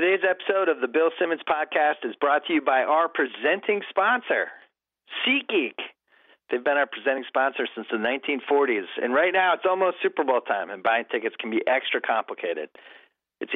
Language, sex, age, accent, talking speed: English, male, 40-59, American, 175 wpm